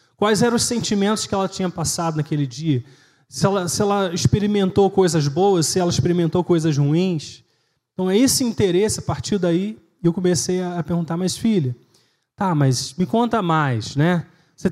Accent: Brazilian